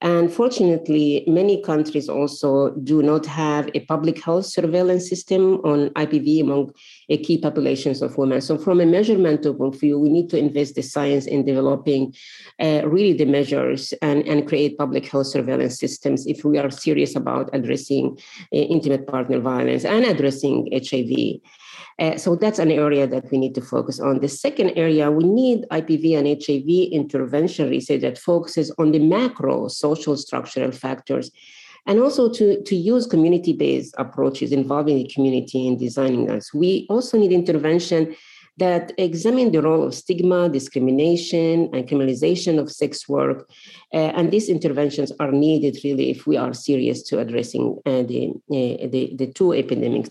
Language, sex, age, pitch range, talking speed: English, female, 40-59, 140-170 Hz, 165 wpm